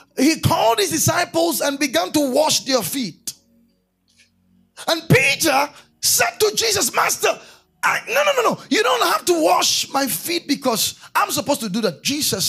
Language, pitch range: English, 175-285 Hz